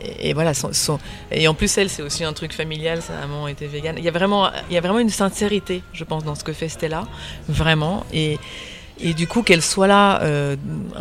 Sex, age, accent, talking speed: female, 30-49, French, 235 wpm